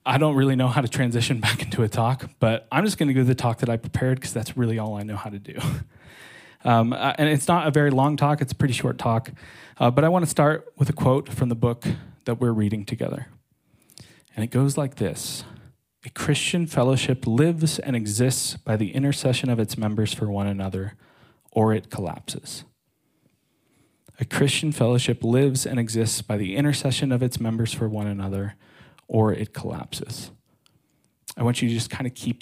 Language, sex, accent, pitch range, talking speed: English, male, American, 110-140 Hz, 200 wpm